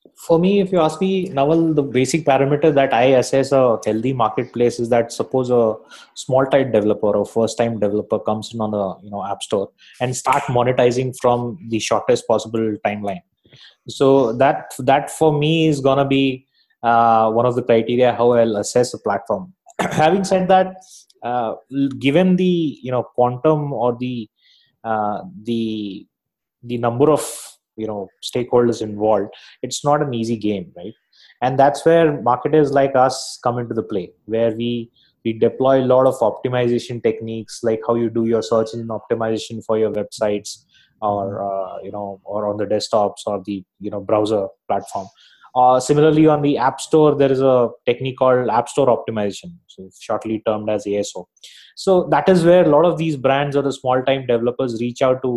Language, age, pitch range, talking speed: English, 20-39, 110-140 Hz, 180 wpm